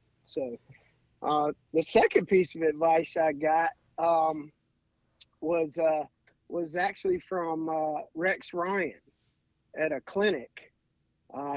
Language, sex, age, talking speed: English, male, 40-59, 115 wpm